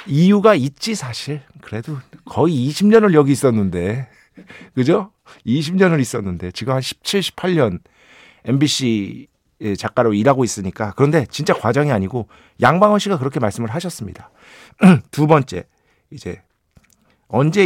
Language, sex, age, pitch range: Korean, male, 50-69, 105-160 Hz